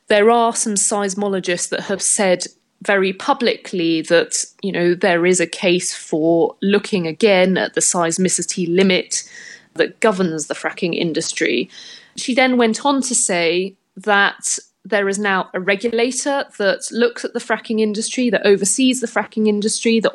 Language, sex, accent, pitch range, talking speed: English, female, British, 190-235 Hz, 155 wpm